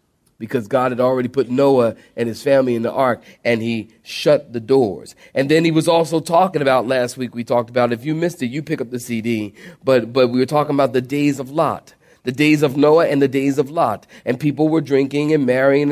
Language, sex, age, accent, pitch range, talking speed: English, male, 40-59, American, 115-155 Hz, 240 wpm